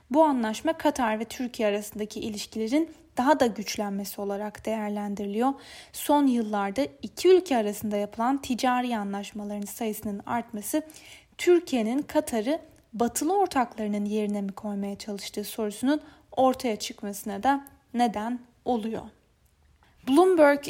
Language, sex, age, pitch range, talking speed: Turkish, female, 10-29, 215-285 Hz, 105 wpm